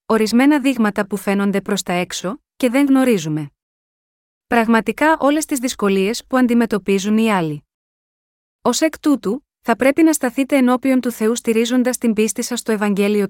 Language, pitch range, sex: Greek, 195-250 Hz, female